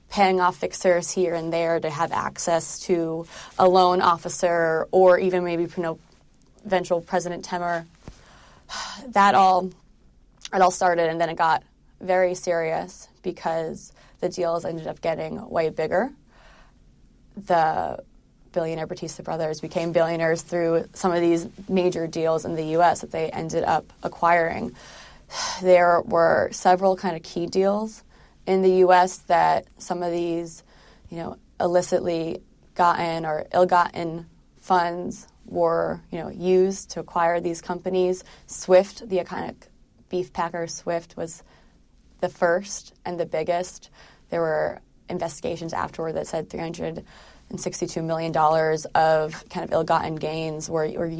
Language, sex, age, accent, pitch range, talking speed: English, female, 20-39, American, 165-185 Hz, 135 wpm